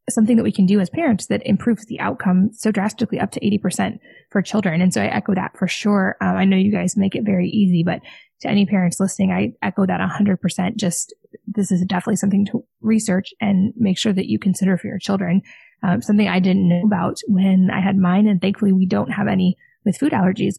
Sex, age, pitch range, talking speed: female, 20-39, 185-210 Hz, 225 wpm